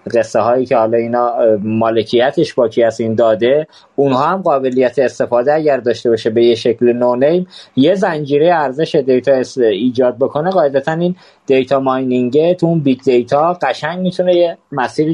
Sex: male